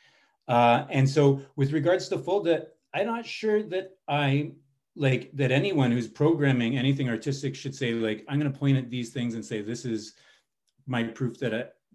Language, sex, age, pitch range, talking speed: English, male, 30-49, 110-135 Hz, 185 wpm